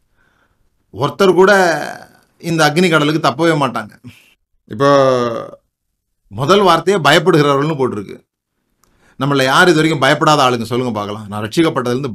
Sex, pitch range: male, 115-160 Hz